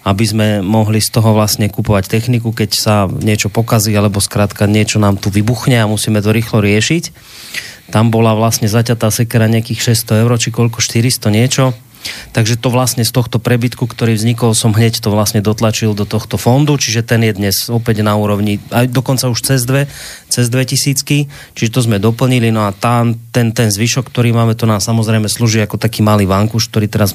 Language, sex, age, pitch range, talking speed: Slovak, male, 30-49, 110-120 Hz, 190 wpm